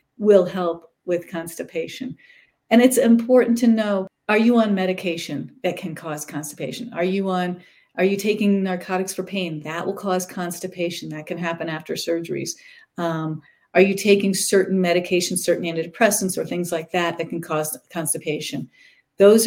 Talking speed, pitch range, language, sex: 160 wpm, 170-205 Hz, English, female